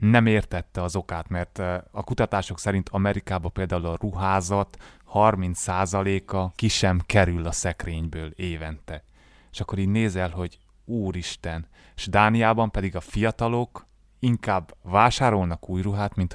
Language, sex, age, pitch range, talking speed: Hungarian, male, 30-49, 90-105 Hz, 130 wpm